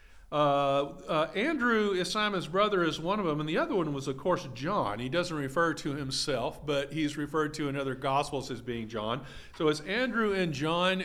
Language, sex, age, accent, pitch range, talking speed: English, male, 50-69, American, 150-195 Hz, 205 wpm